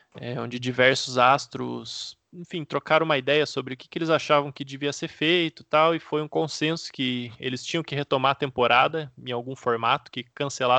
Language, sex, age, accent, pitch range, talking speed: Portuguese, male, 20-39, Brazilian, 125-145 Hz, 200 wpm